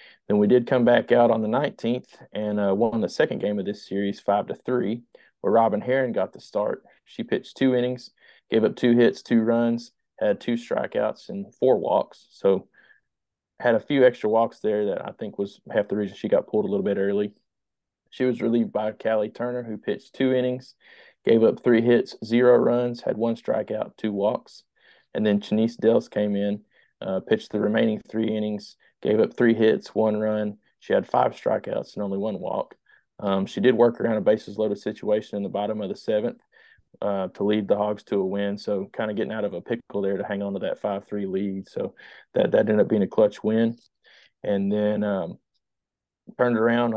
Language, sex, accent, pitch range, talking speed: English, male, American, 105-120 Hz, 210 wpm